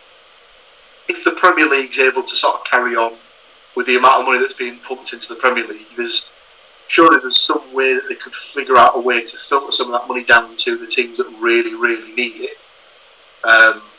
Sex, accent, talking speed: male, British, 220 wpm